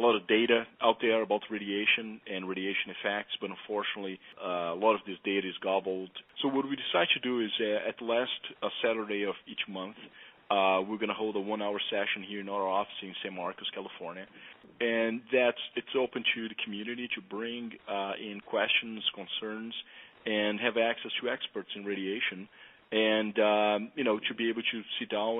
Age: 40-59